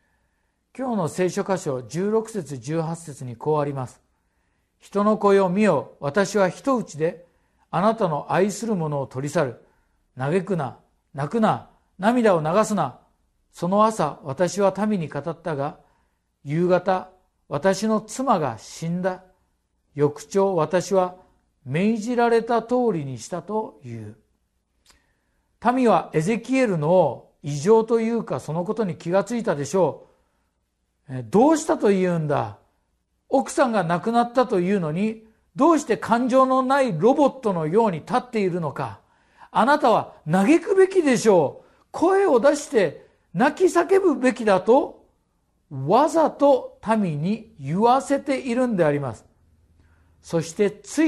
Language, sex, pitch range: Japanese, male, 145-230 Hz